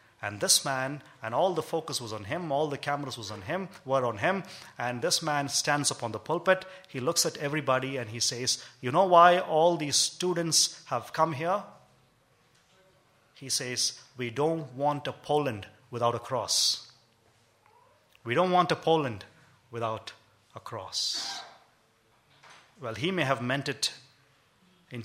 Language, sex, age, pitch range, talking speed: English, male, 30-49, 115-150 Hz, 160 wpm